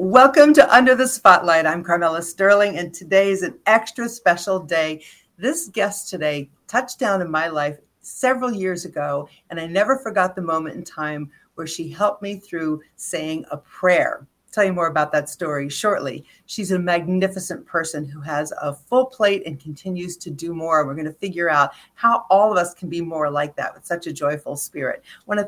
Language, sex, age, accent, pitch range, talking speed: English, female, 50-69, American, 160-205 Hz, 195 wpm